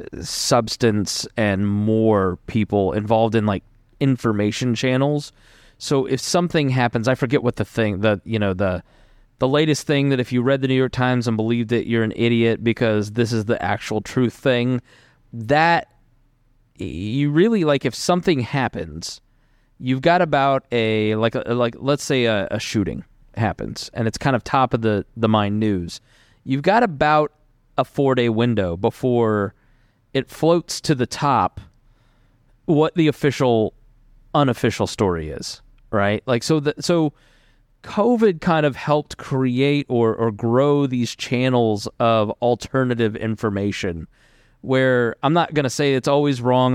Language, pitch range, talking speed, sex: English, 110-135 Hz, 155 wpm, male